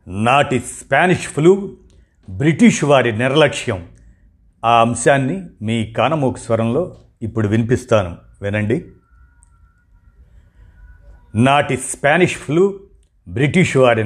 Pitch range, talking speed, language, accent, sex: 115-150 Hz, 80 wpm, Telugu, native, male